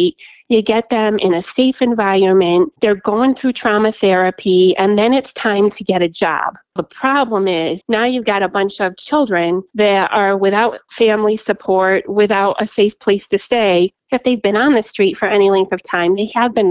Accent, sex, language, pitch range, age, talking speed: American, female, English, 185-215 Hz, 30-49, 200 wpm